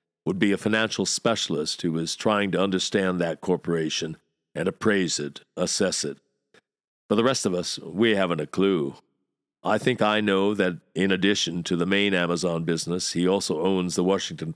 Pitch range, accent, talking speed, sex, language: 85-105 Hz, American, 175 wpm, male, English